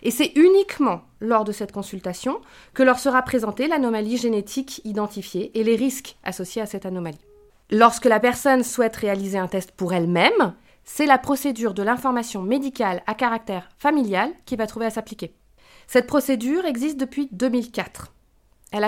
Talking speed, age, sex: 160 wpm, 30-49, female